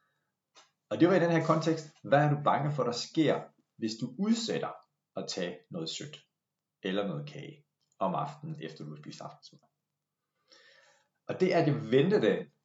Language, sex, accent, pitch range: Danish, male, native, 110-165 Hz